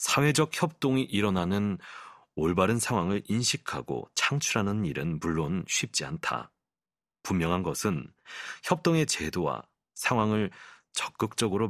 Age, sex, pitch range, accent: 40-59, male, 95-140 Hz, native